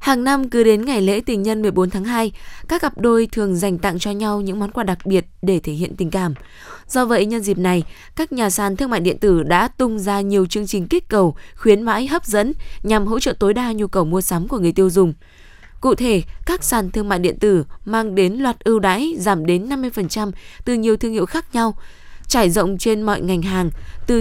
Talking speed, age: 235 wpm, 10-29